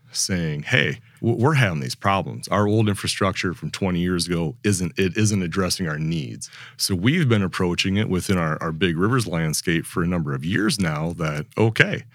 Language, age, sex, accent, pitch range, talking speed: English, 40-59, male, American, 85-110 Hz, 190 wpm